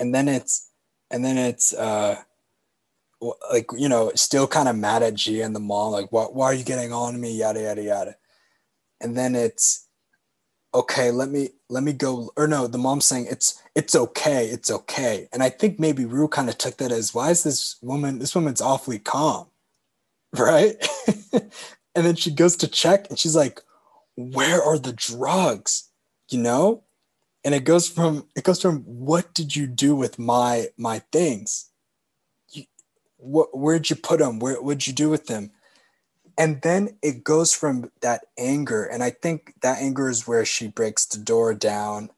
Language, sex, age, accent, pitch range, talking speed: English, male, 20-39, American, 115-150 Hz, 185 wpm